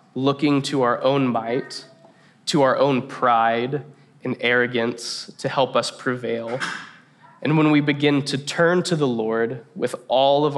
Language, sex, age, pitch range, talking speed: English, male, 20-39, 120-145 Hz, 155 wpm